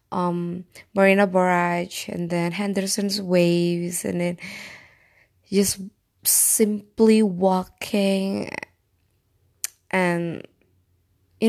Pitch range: 140-205 Hz